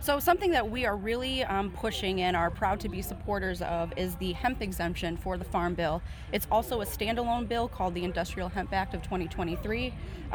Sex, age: female, 30-49